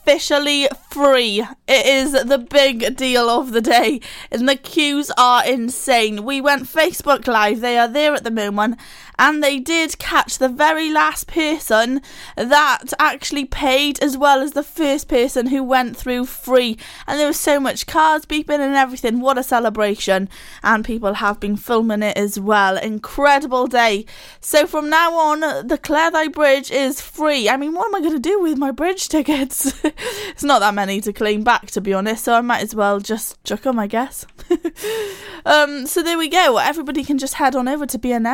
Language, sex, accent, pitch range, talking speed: English, female, British, 240-305 Hz, 195 wpm